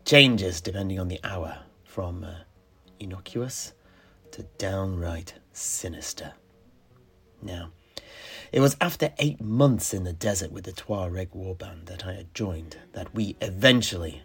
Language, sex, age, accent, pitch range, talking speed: English, male, 30-49, British, 90-115 Hz, 130 wpm